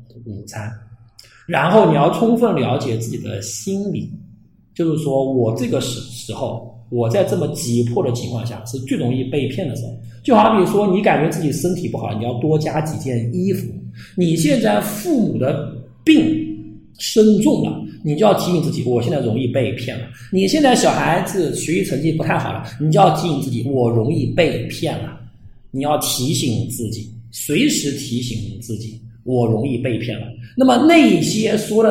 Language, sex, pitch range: Chinese, male, 115-180 Hz